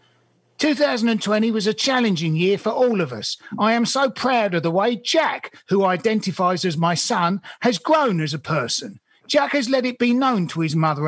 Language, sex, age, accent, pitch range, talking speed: English, male, 50-69, British, 180-255 Hz, 195 wpm